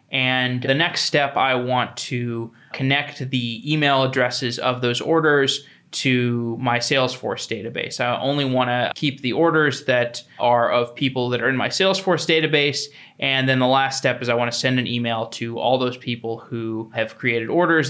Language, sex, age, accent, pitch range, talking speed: English, male, 20-39, American, 125-150 Hz, 180 wpm